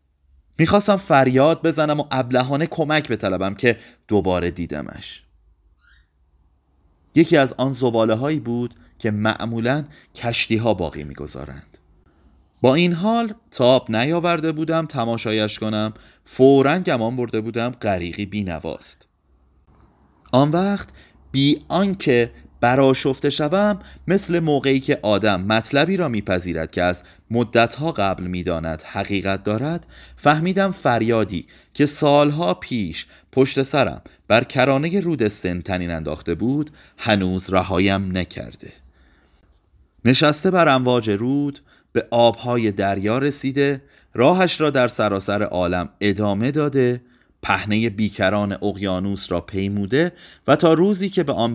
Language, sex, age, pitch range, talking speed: Persian, male, 30-49, 90-145 Hz, 115 wpm